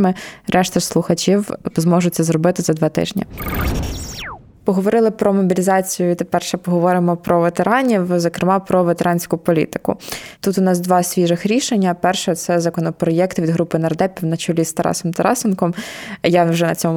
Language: Ukrainian